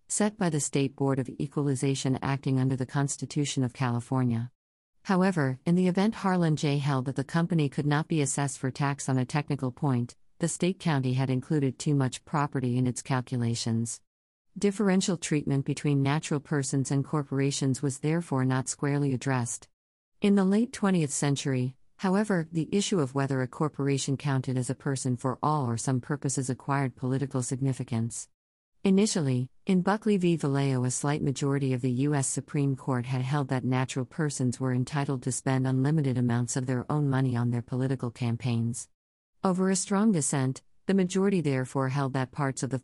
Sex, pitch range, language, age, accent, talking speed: female, 130-155 Hz, English, 50-69, American, 175 wpm